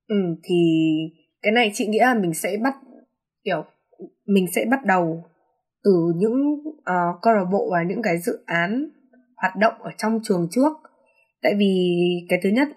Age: 20-39